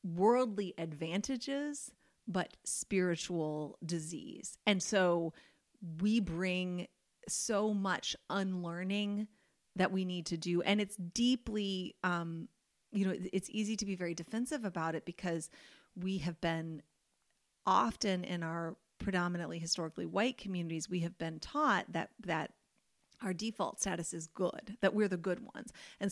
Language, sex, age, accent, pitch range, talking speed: English, female, 30-49, American, 175-205 Hz, 135 wpm